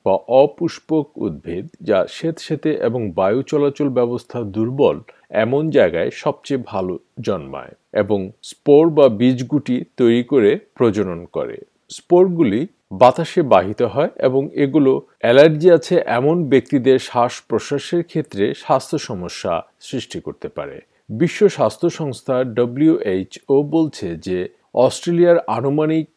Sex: male